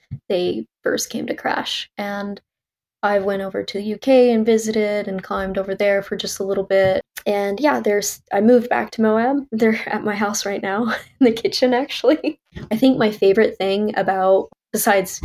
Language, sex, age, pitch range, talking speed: English, female, 20-39, 185-245 Hz, 185 wpm